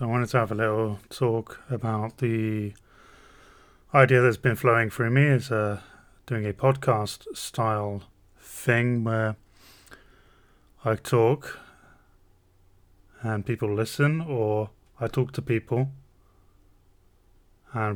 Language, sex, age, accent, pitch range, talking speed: English, male, 20-39, British, 95-120 Hz, 115 wpm